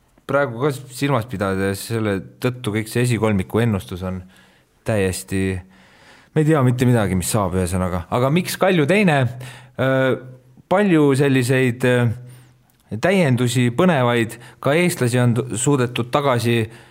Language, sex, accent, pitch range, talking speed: English, male, Finnish, 110-130 Hz, 115 wpm